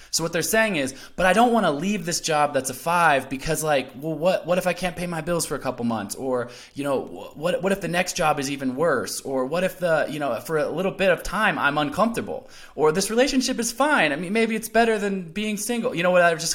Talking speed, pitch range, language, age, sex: 275 wpm, 115-170 Hz, English, 20-39, male